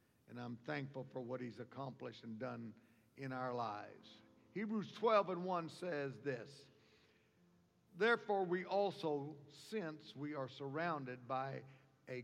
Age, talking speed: 60-79, 130 wpm